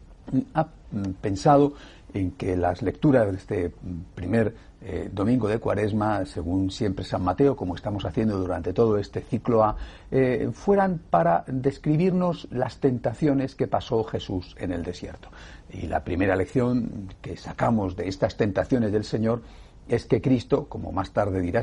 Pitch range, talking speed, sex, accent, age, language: 95-120 Hz, 155 wpm, male, Spanish, 60-79, Spanish